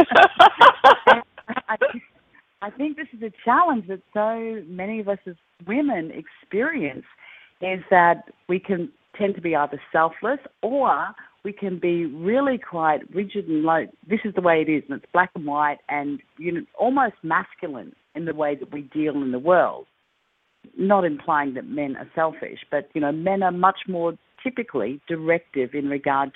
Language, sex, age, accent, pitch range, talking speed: English, female, 40-59, Australian, 155-210 Hz, 170 wpm